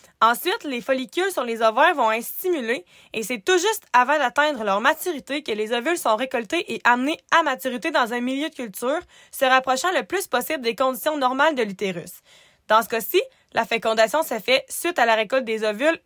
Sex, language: female, French